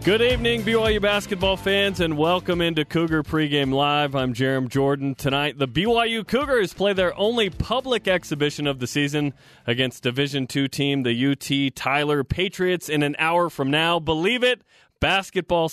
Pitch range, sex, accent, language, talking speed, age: 135-180 Hz, male, American, English, 160 wpm, 30-49